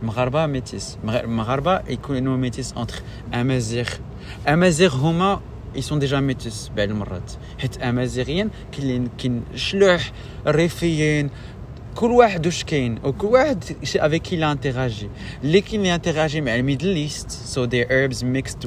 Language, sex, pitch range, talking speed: French, male, 110-145 Hz, 85 wpm